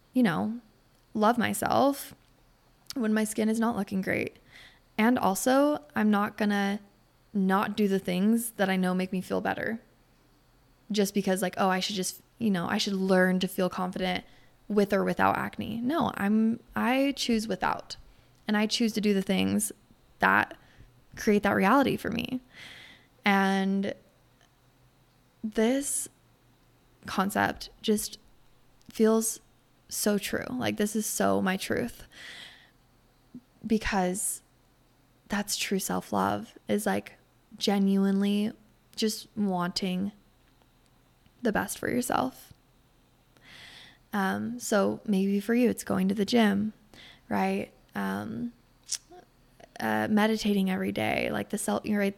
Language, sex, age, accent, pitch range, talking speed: English, female, 20-39, American, 185-220 Hz, 130 wpm